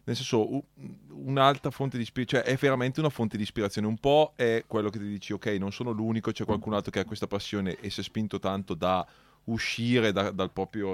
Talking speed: 225 wpm